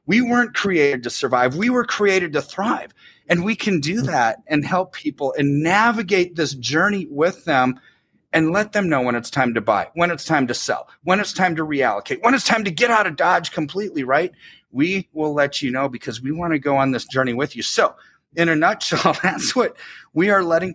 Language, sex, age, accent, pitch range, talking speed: English, male, 30-49, American, 135-195 Hz, 225 wpm